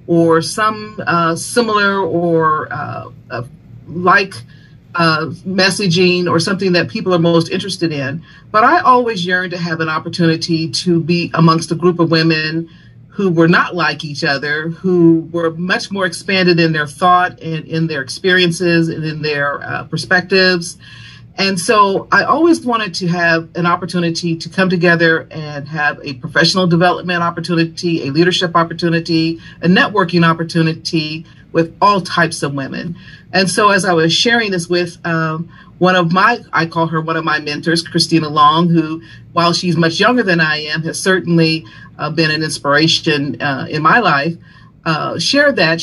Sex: female